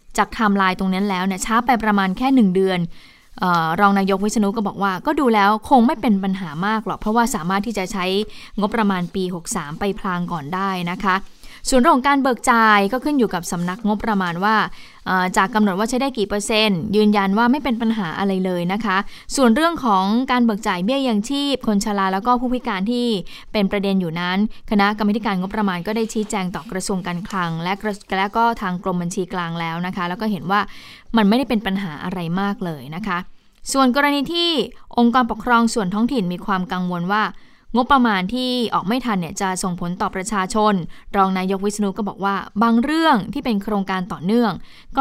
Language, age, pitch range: Thai, 20-39, 190-230 Hz